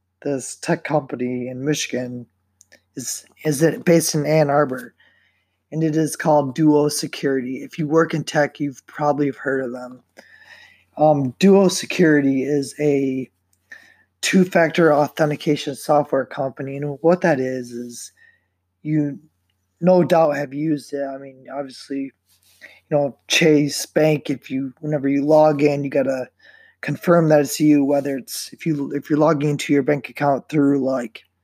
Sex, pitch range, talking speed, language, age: male, 130-155 Hz, 160 wpm, English, 20-39